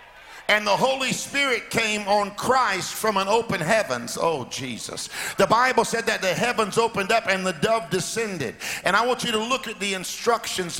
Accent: American